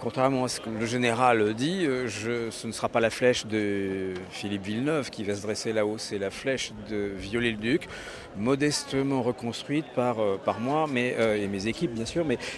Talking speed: 180 wpm